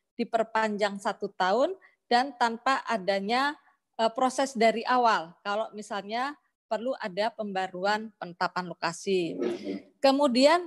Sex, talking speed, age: female, 95 wpm, 20-39